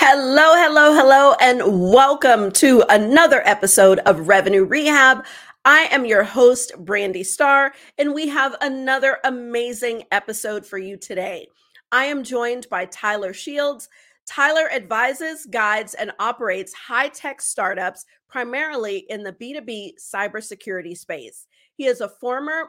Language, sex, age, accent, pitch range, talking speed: English, female, 40-59, American, 205-275 Hz, 130 wpm